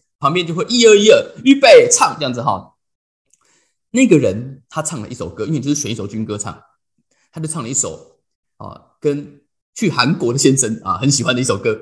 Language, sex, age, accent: Chinese, male, 20-39, native